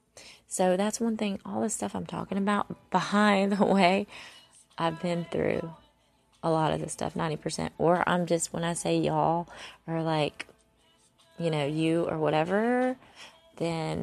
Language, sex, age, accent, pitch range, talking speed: English, female, 20-39, American, 160-205 Hz, 160 wpm